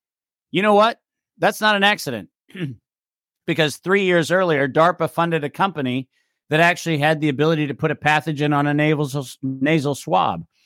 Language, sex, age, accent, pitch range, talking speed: English, male, 50-69, American, 140-175 Hz, 160 wpm